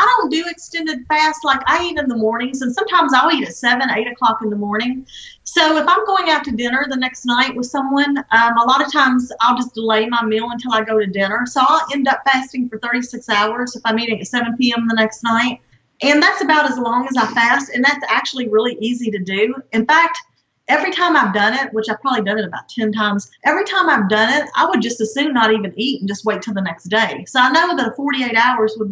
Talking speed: 255 wpm